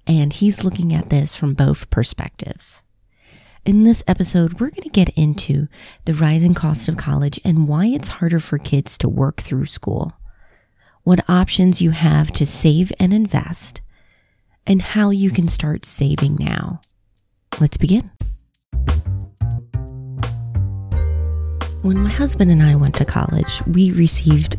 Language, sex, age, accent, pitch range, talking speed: English, female, 30-49, American, 140-180 Hz, 140 wpm